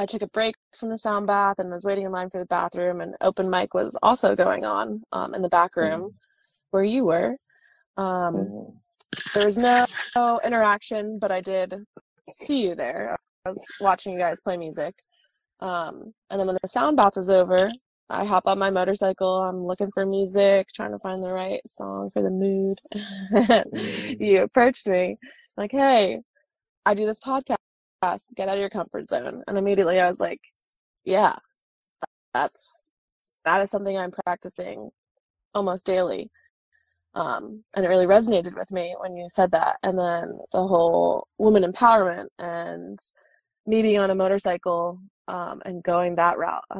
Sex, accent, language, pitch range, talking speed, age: female, American, English, 185-215 Hz, 175 wpm, 20-39